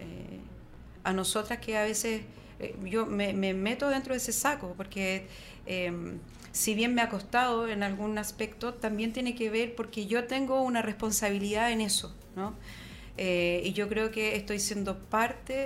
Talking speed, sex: 175 wpm, female